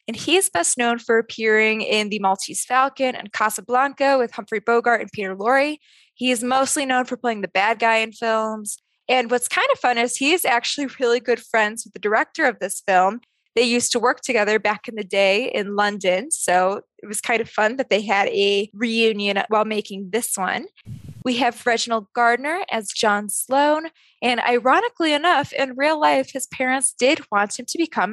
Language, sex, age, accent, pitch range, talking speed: English, female, 20-39, American, 215-275 Hz, 195 wpm